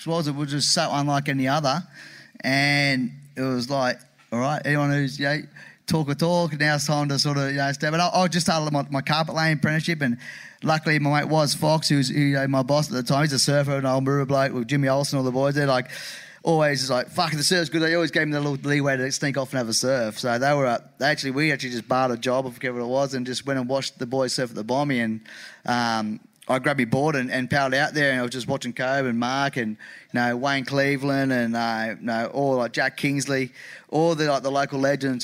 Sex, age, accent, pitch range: male, 20-39, Australian, 130-150 Hz